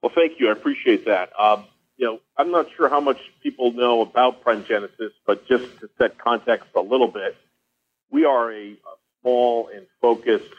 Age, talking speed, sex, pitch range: 50-69, 185 wpm, male, 95-125 Hz